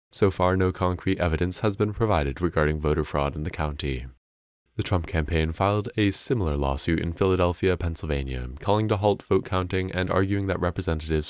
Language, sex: English, male